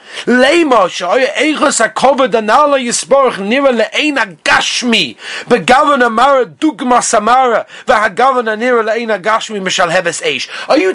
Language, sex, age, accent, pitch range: English, male, 30-49, British, 200-260 Hz